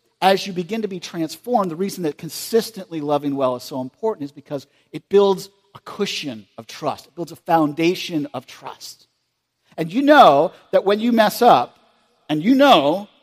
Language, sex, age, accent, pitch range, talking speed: English, male, 50-69, American, 140-210 Hz, 180 wpm